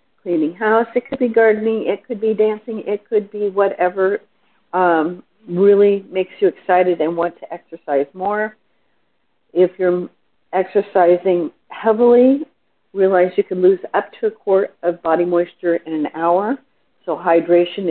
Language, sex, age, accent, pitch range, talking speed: English, female, 50-69, American, 160-200 Hz, 145 wpm